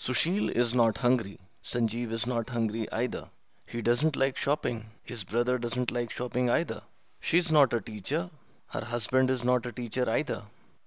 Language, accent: English, Indian